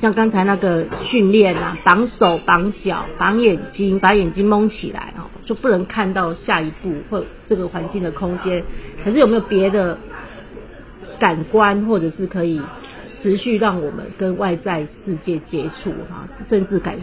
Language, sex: Chinese, female